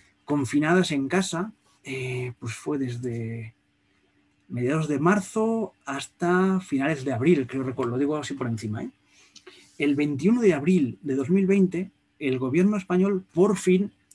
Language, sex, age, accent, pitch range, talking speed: Spanish, male, 30-49, Spanish, 125-180 Hz, 135 wpm